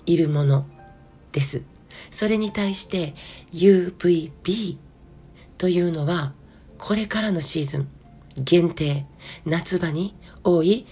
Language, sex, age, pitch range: Japanese, female, 40-59, 155-195 Hz